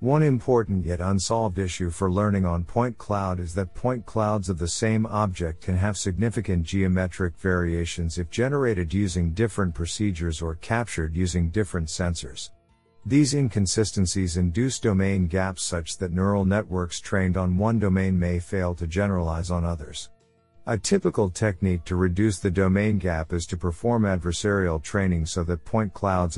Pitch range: 90-110 Hz